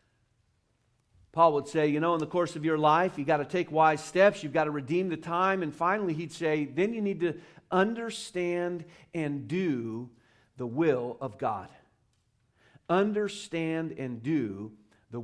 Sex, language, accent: male, English, American